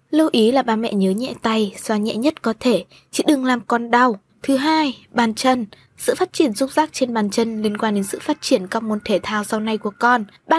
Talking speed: 255 wpm